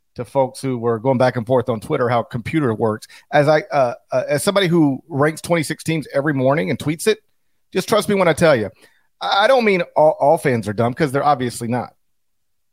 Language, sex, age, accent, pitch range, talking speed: English, male, 40-59, American, 125-185 Hz, 220 wpm